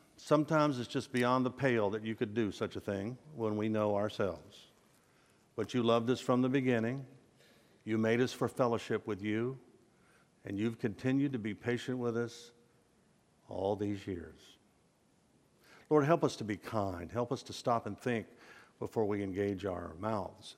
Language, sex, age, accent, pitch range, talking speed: English, male, 50-69, American, 105-130 Hz, 170 wpm